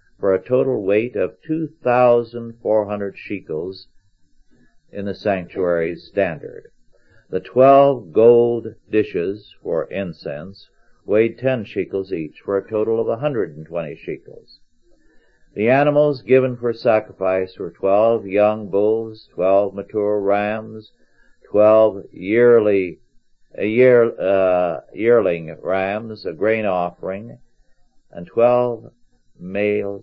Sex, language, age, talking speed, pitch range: male, English, 60-79, 105 wpm, 95-120 Hz